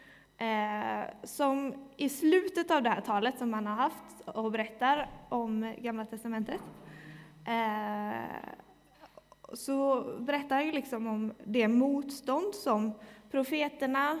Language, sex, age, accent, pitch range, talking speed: Swedish, female, 20-39, native, 215-265 Hz, 105 wpm